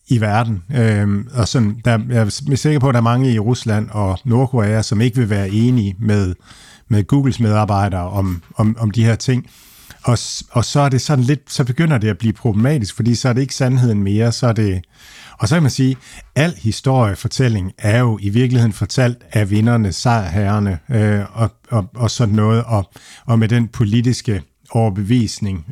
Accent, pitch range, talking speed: native, 105-125 Hz, 195 wpm